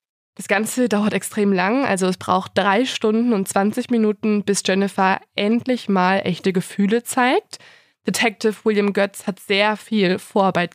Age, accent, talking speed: 20-39, German, 150 wpm